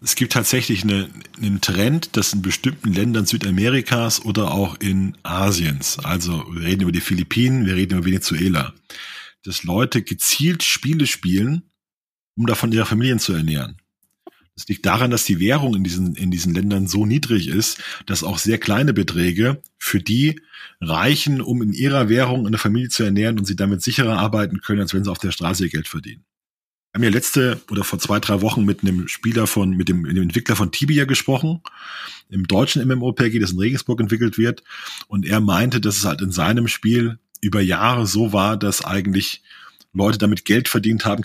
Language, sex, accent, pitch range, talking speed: German, male, German, 100-125 Hz, 190 wpm